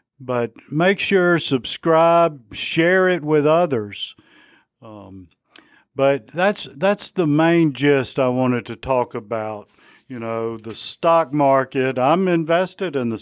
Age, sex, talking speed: 50-69, male, 130 wpm